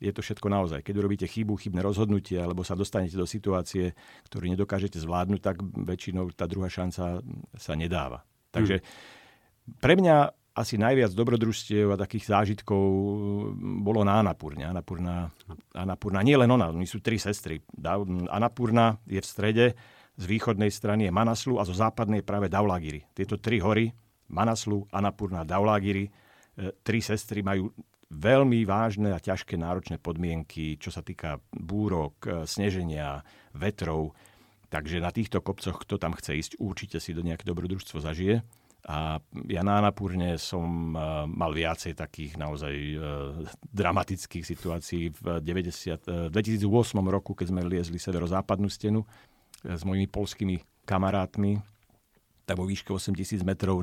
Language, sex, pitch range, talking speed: Slovak, male, 85-105 Hz, 135 wpm